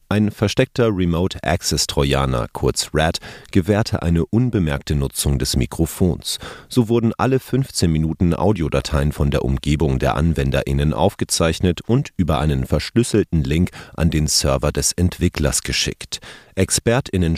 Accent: German